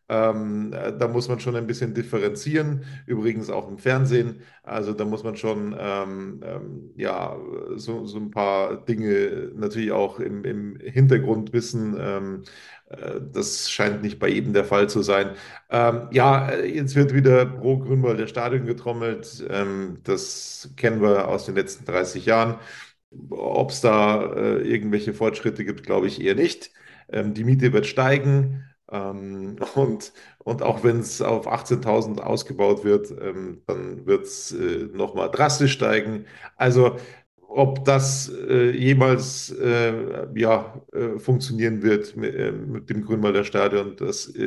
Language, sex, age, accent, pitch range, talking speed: German, male, 40-59, German, 105-125 Hz, 150 wpm